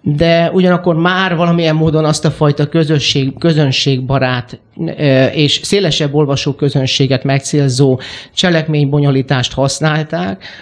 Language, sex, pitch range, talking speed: Hungarian, male, 140-170 Hz, 95 wpm